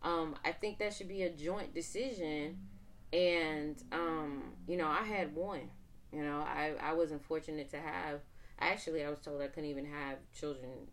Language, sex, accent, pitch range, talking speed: English, female, American, 140-165 Hz, 180 wpm